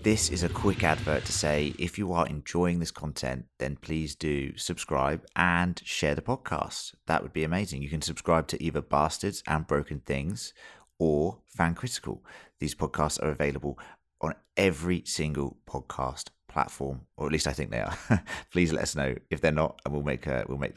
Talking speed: 190 wpm